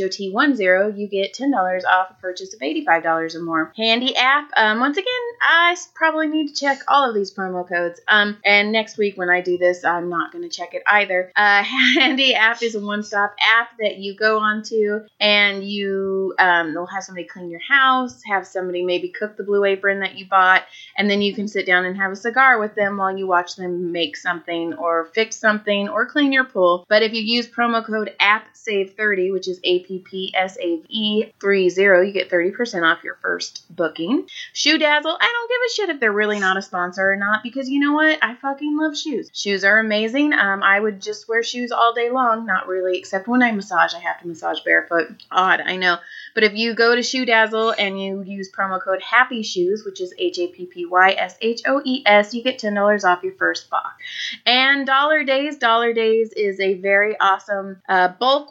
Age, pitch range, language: 30-49, 190-240 Hz, English